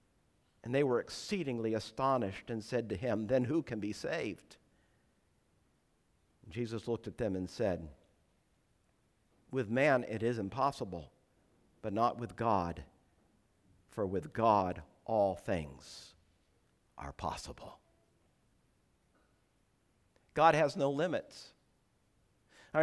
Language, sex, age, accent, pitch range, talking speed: English, male, 50-69, American, 110-165 Hz, 110 wpm